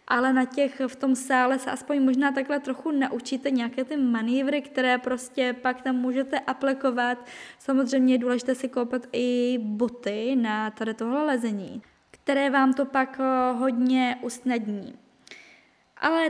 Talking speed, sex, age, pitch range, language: 145 wpm, female, 10-29, 235-270 Hz, Czech